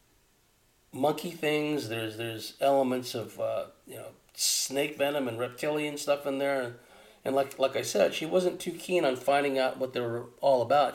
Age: 40-59